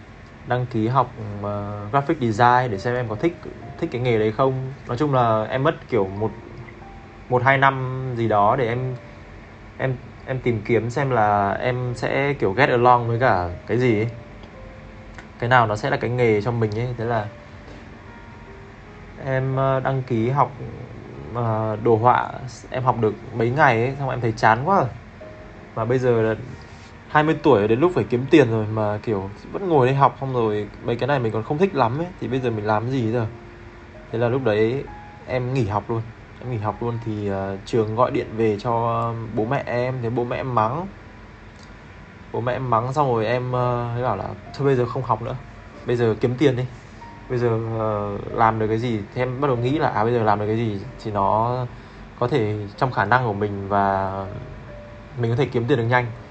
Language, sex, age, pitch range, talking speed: Vietnamese, male, 20-39, 110-125 Hz, 210 wpm